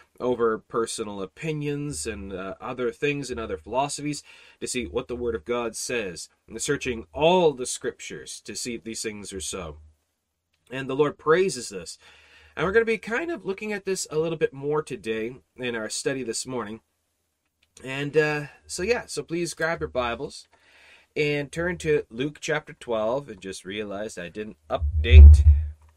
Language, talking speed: English, 175 wpm